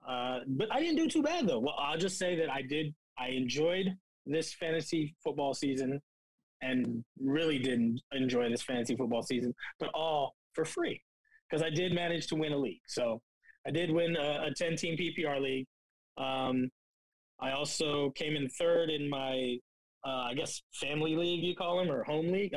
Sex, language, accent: male, English, American